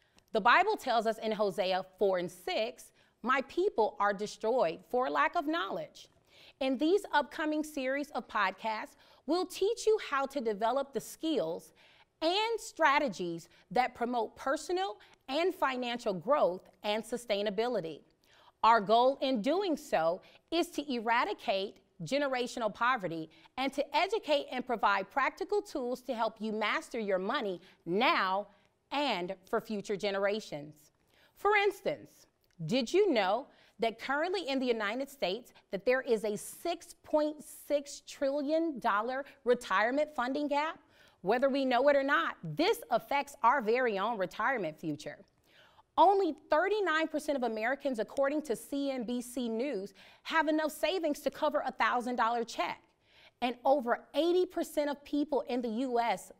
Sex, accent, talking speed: female, American, 135 wpm